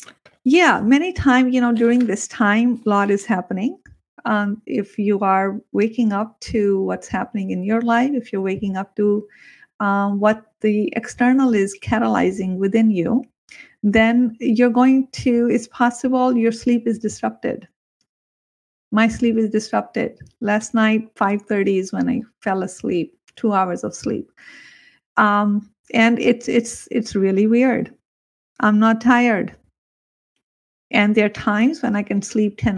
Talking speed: 150 wpm